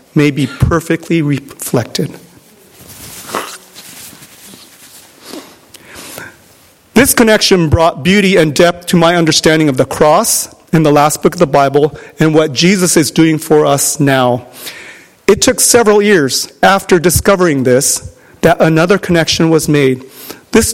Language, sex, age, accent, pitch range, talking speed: English, male, 40-59, American, 145-180 Hz, 125 wpm